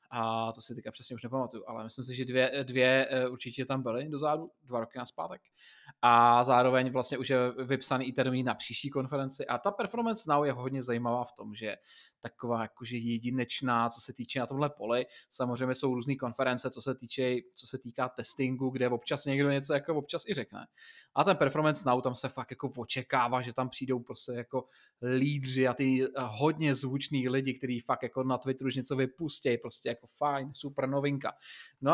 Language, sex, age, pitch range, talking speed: Czech, male, 20-39, 125-150 Hz, 195 wpm